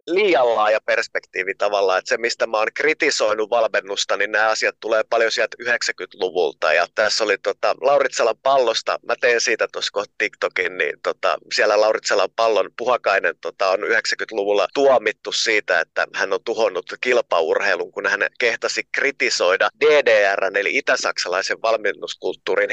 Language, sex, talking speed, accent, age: Finnish, male, 140 wpm, native, 30-49